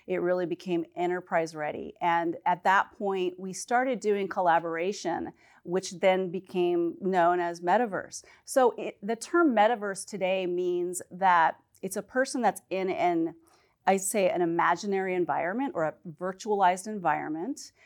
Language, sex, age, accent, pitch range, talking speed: English, female, 40-59, American, 175-220 Hz, 140 wpm